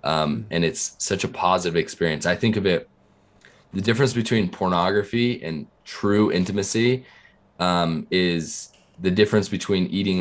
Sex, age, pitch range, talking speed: male, 20-39, 85-110 Hz, 140 wpm